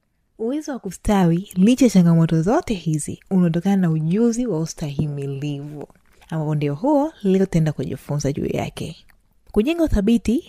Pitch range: 165-215 Hz